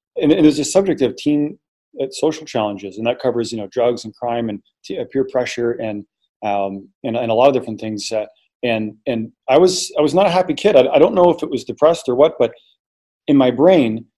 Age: 30-49